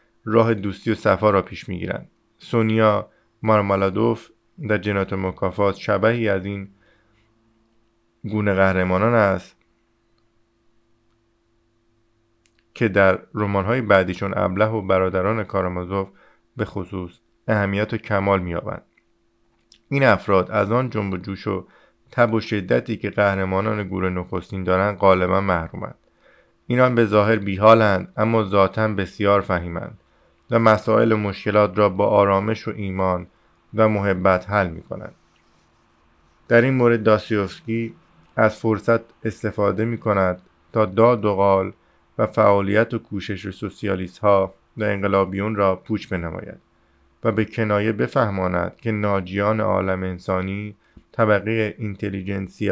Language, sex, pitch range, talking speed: Persian, male, 95-110 Hz, 120 wpm